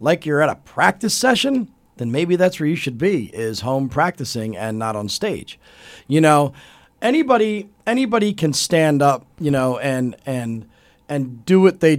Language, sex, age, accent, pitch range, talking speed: English, male, 40-59, American, 130-190 Hz, 170 wpm